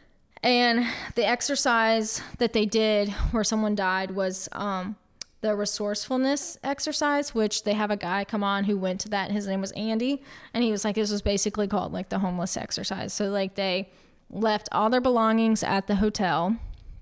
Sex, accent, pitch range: female, American, 200-235 Hz